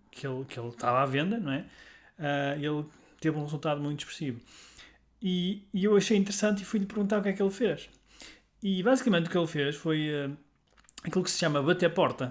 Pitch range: 145-195 Hz